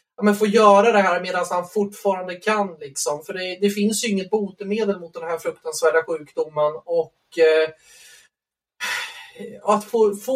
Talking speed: 140 wpm